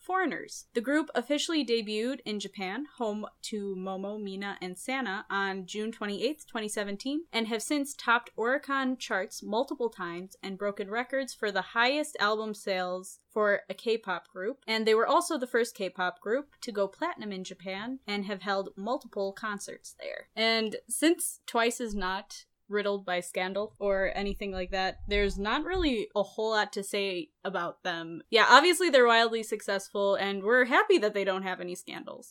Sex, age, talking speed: female, 10-29, 170 wpm